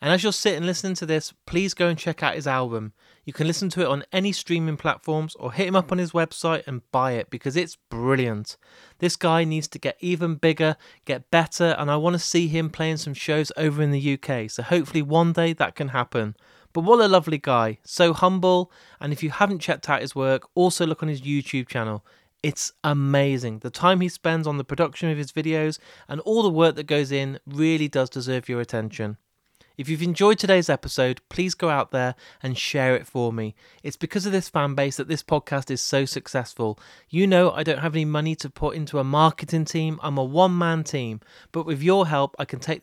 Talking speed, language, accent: 225 wpm, English, British